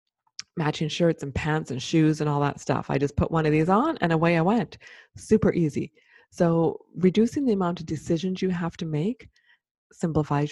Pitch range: 150-195 Hz